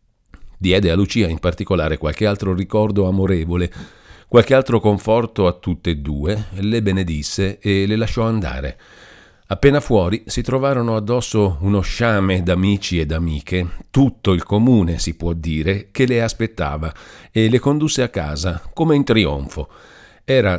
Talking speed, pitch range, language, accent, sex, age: 145 wpm, 90-115 Hz, Italian, native, male, 50-69